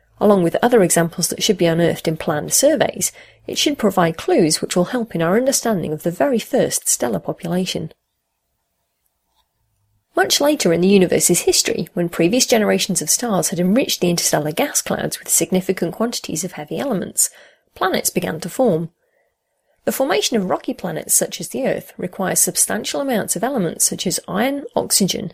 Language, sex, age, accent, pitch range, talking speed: English, female, 30-49, British, 170-235 Hz, 170 wpm